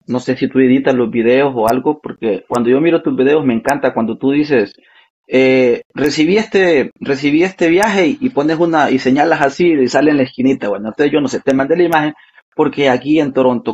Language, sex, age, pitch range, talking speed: Spanish, male, 30-49, 120-145 Hz, 225 wpm